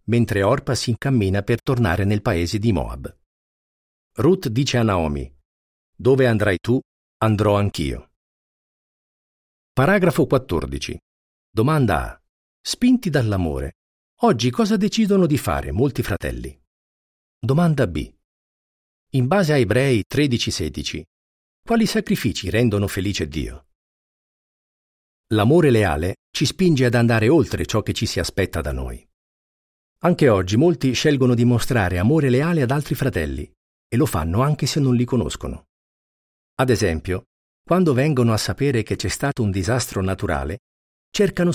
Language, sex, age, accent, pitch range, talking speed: Italian, male, 50-69, native, 80-130 Hz, 130 wpm